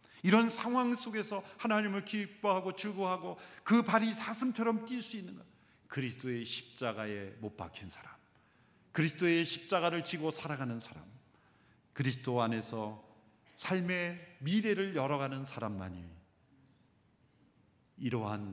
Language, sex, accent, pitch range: Korean, male, native, 110-180 Hz